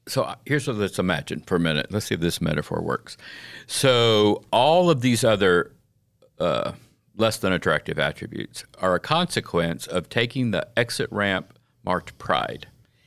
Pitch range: 90-115 Hz